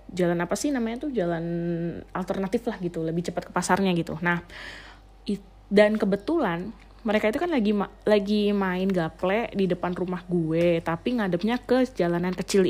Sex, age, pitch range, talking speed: female, 20-39, 180-235 Hz, 160 wpm